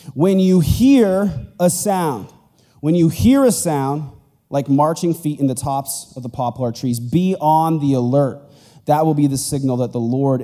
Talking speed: 185 wpm